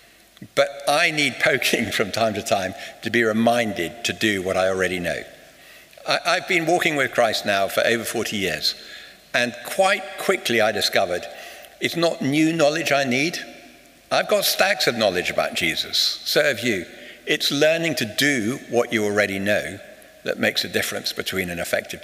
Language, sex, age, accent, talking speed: English, male, 60-79, British, 170 wpm